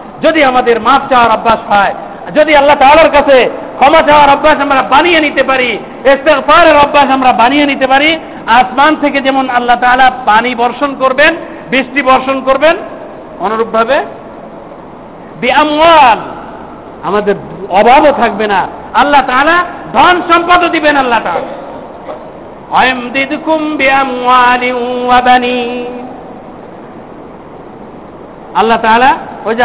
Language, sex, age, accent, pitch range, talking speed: Bengali, male, 50-69, native, 245-300 Hz, 85 wpm